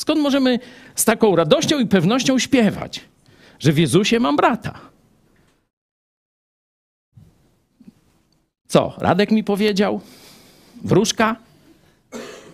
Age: 50-69